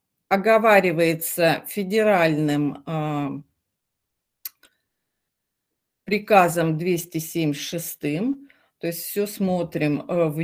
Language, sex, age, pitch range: Russian, female, 40-59, 175-230 Hz